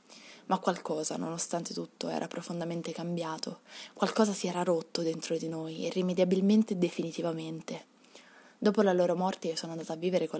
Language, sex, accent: Italian, female, native